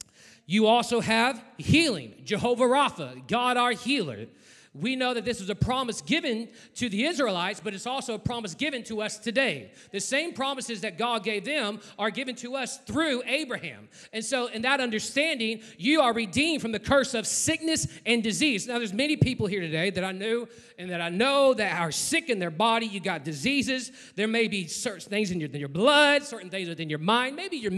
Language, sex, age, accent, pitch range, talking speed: English, male, 30-49, American, 205-260 Hz, 205 wpm